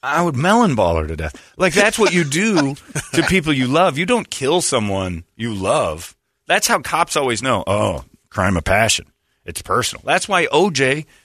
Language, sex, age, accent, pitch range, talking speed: English, male, 40-59, American, 110-175 Hz, 190 wpm